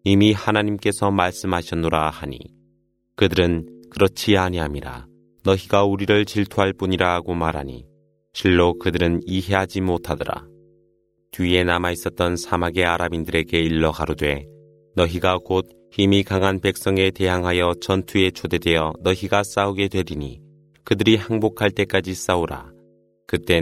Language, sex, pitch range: Korean, male, 85-100 Hz